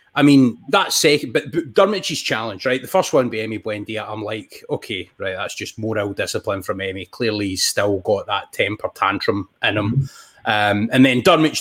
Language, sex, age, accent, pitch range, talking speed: English, male, 30-49, British, 110-140 Hz, 195 wpm